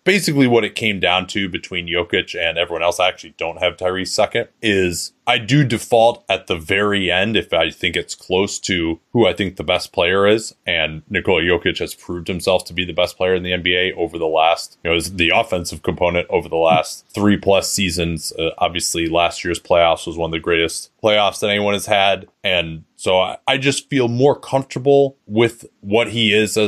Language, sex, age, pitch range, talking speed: English, male, 20-39, 85-110 Hz, 210 wpm